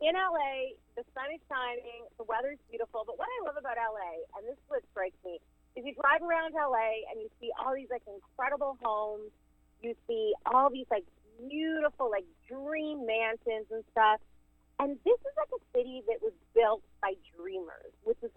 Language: English